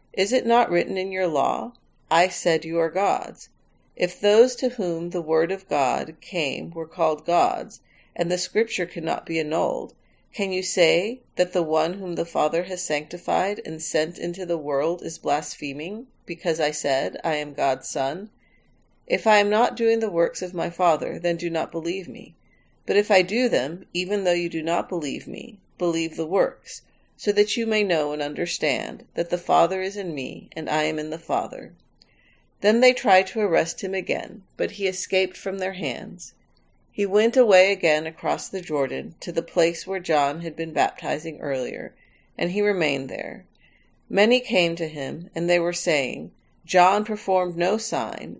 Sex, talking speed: female, 185 wpm